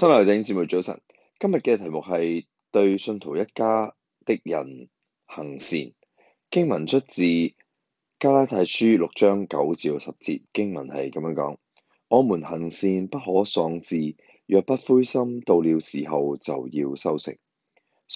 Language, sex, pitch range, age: Chinese, male, 80-115 Hz, 20-39